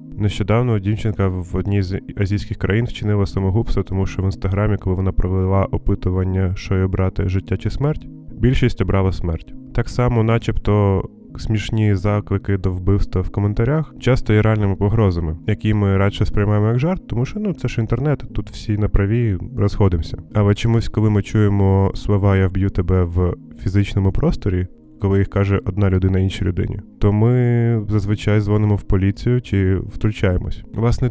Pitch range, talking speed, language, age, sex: 95-110 Hz, 160 wpm, Ukrainian, 20-39, male